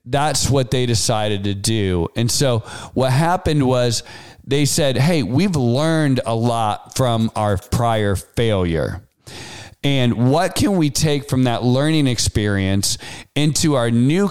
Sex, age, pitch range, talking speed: male, 40-59, 115-150 Hz, 145 wpm